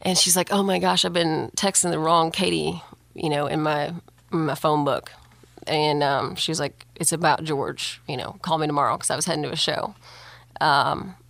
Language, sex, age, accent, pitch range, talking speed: English, female, 30-49, American, 155-180 Hz, 220 wpm